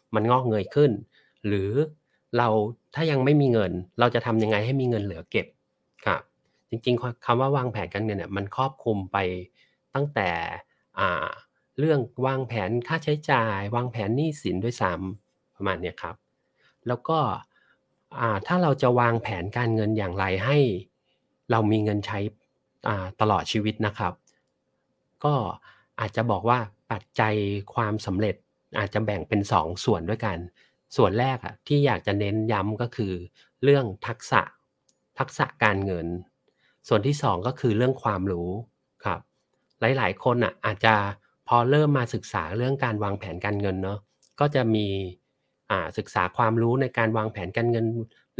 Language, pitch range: Thai, 100-130 Hz